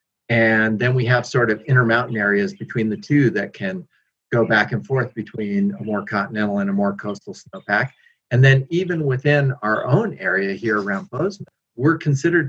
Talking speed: 185 wpm